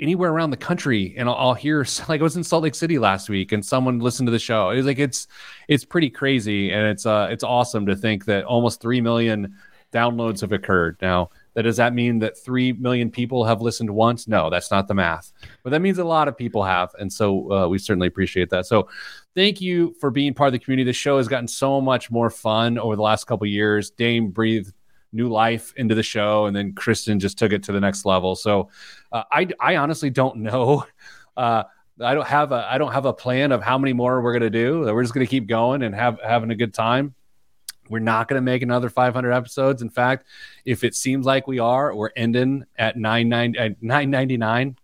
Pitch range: 105-135 Hz